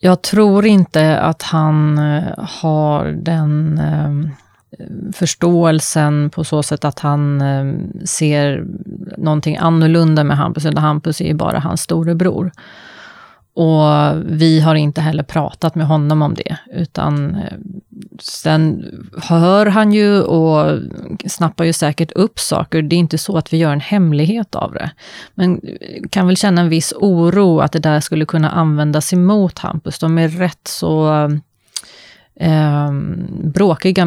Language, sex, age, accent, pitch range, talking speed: Swedish, female, 30-49, native, 150-180 Hz, 140 wpm